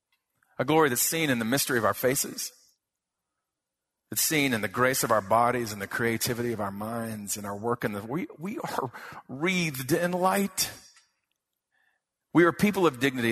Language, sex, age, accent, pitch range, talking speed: English, male, 40-59, American, 115-175 Hz, 175 wpm